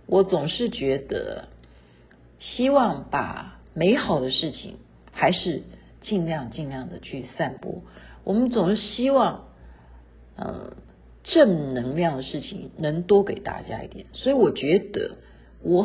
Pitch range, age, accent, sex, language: 135-220 Hz, 50-69, native, female, Chinese